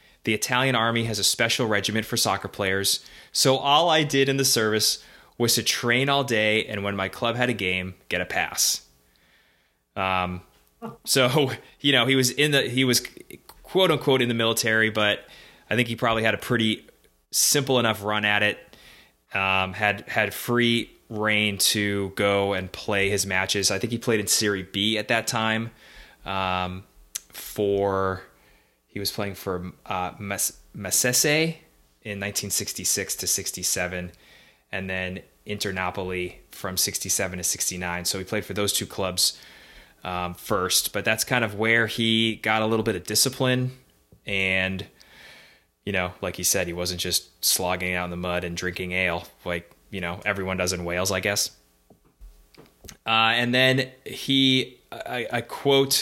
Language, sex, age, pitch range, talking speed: English, male, 20-39, 95-115 Hz, 165 wpm